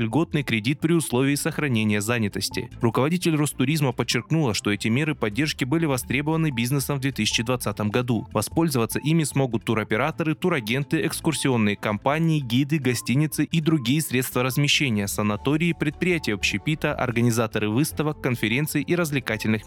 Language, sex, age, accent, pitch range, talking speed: Russian, male, 20-39, native, 115-155 Hz, 120 wpm